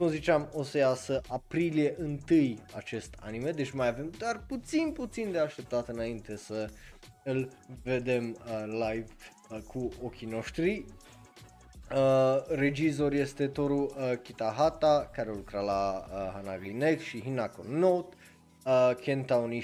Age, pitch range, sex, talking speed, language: 20-39, 110-145 Hz, male, 140 wpm, Romanian